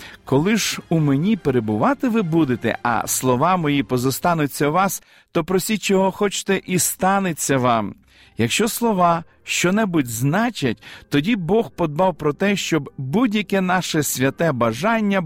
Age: 40-59